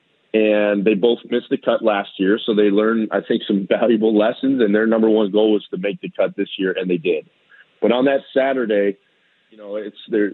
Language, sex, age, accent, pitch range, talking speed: English, male, 40-59, American, 100-115 Hz, 225 wpm